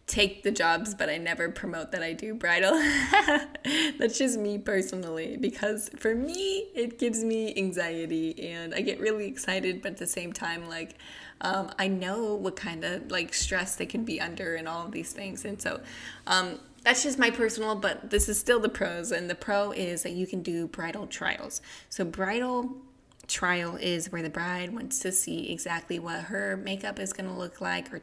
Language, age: English, 20-39